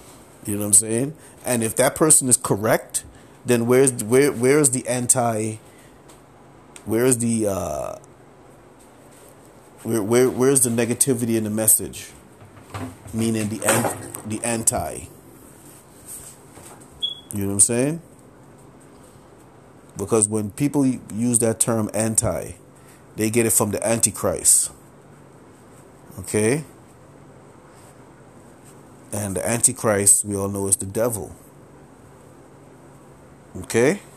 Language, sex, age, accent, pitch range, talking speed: English, male, 30-49, American, 100-125 Hz, 110 wpm